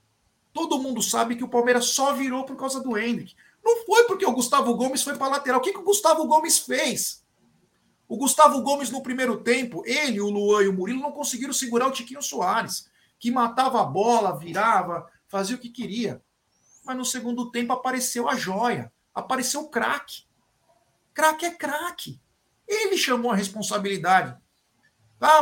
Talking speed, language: 170 wpm, Portuguese